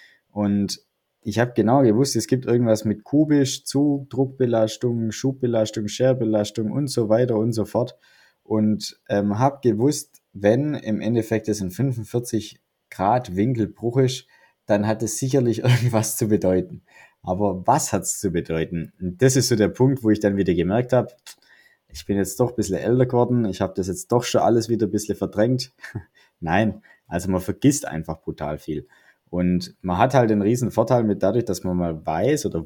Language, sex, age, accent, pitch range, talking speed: German, male, 20-39, German, 100-130 Hz, 180 wpm